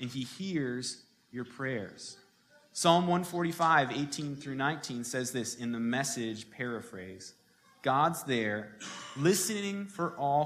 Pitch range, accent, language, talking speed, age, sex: 125-180 Hz, American, English, 120 wpm, 30-49, male